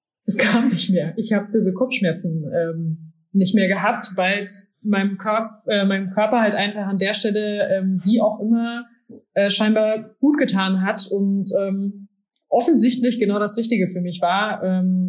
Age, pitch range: 20-39, 185-215 Hz